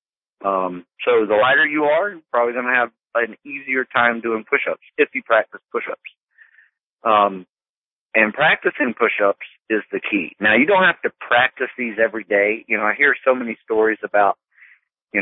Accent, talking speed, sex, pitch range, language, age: American, 180 wpm, male, 105-120 Hz, English, 40-59